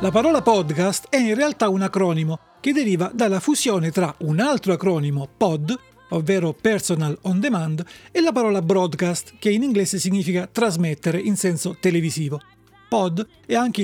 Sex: male